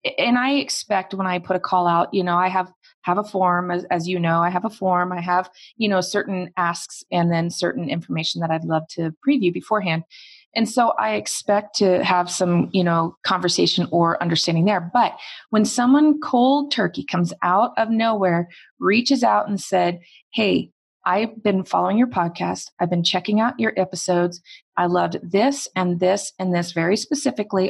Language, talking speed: English, 190 wpm